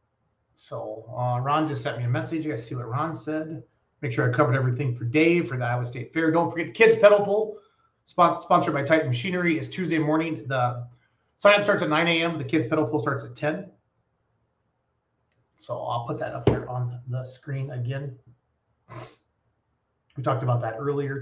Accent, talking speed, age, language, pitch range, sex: American, 190 wpm, 30-49, English, 130-170 Hz, male